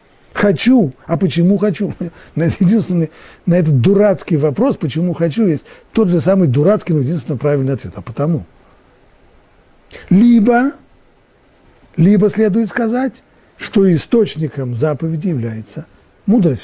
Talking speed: 110 wpm